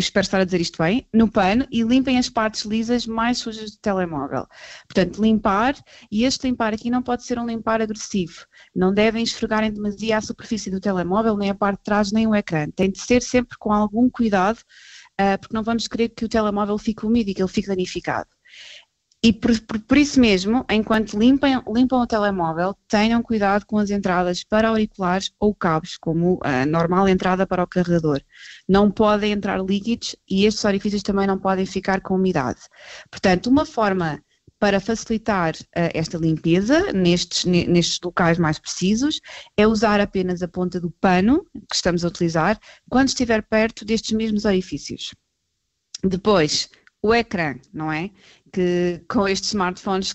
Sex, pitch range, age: female, 180-225 Hz, 20-39